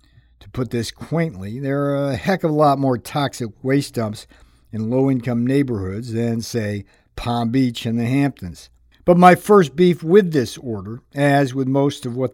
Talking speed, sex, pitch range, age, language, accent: 180 wpm, male, 115-160 Hz, 50-69, English, American